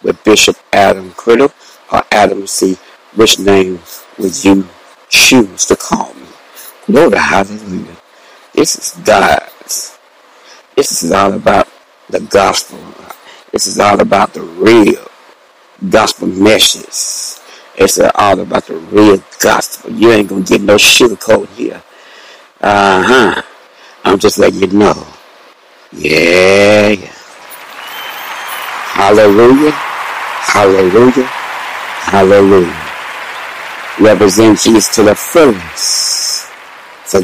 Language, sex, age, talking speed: English, male, 60-79, 110 wpm